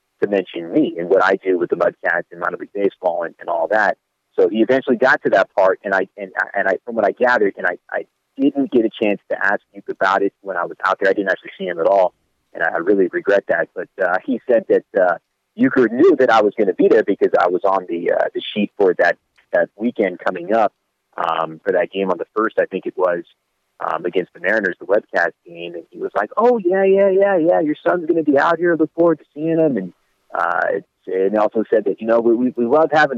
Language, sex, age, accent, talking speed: English, male, 30-49, American, 265 wpm